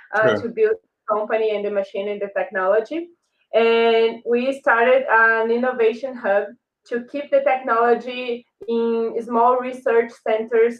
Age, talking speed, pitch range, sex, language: 20-39, 135 wpm, 215-250 Hz, female, English